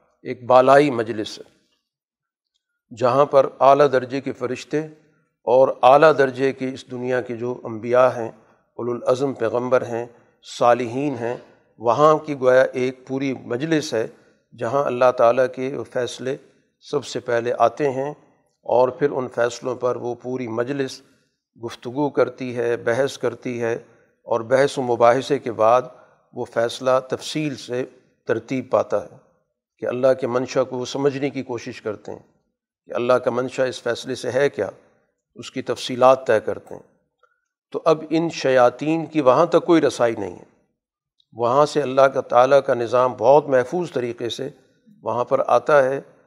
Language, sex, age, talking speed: Urdu, male, 50-69, 155 wpm